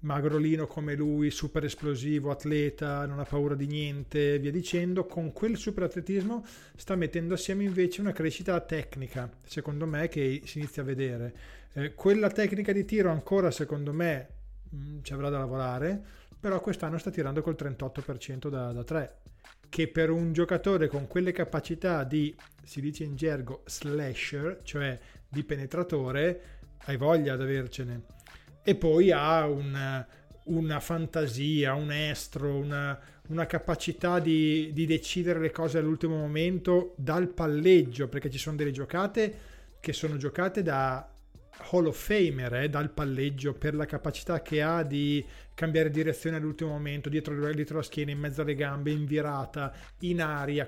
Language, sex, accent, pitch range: Italian, male, native, 140-165 Hz